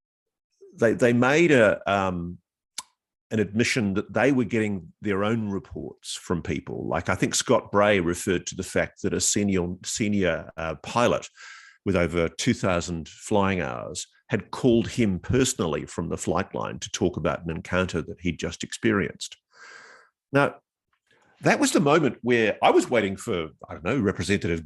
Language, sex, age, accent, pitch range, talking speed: English, male, 50-69, Australian, 90-125 Hz, 165 wpm